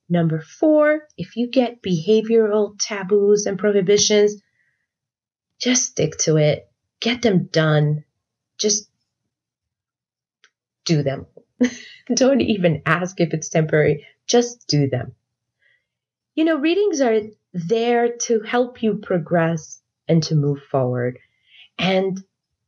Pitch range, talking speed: 170-235 Hz, 110 wpm